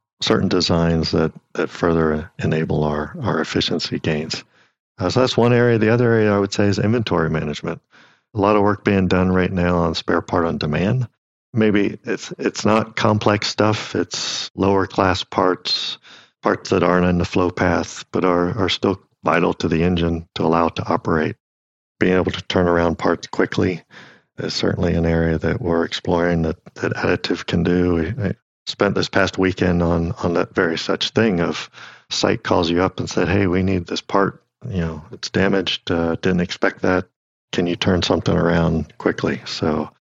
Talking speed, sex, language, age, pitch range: 185 wpm, male, English, 50-69, 85-95 Hz